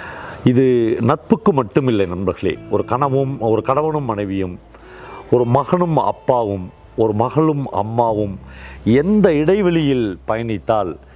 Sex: male